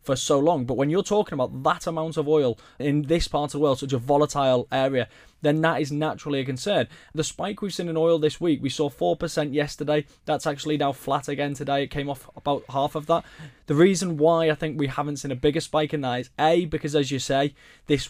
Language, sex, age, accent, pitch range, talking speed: English, male, 20-39, British, 130-150 Hz, 245 wpm